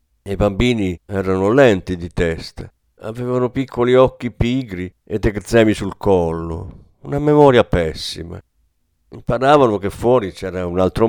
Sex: male